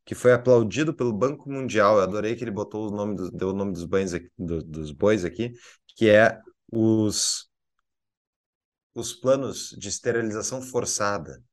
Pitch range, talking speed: 105-125 Hz, 150 wpm